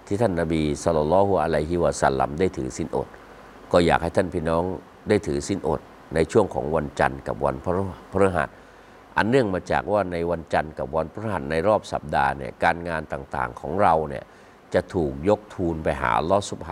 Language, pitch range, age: Thai, 80-100 Hz, 60-79